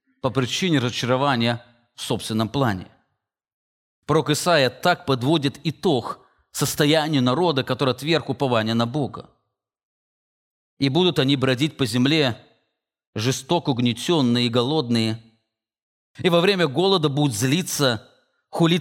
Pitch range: 120-160 Hz